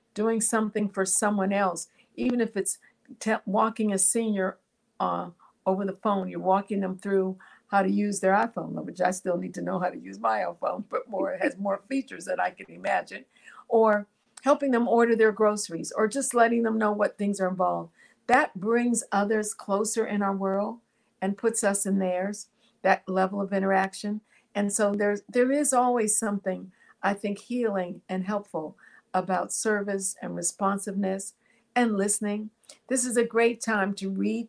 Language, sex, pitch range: English, female, 190-225 Hz